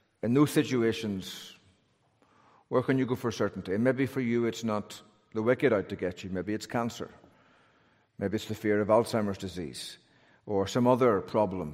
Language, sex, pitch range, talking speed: English, male, 105-120 Hz, 180 wpm